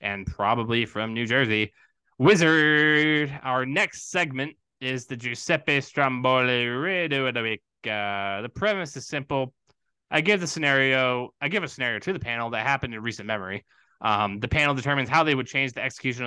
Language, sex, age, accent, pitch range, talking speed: English, male, 20-39, American, 110-150 Hz, 175 wpm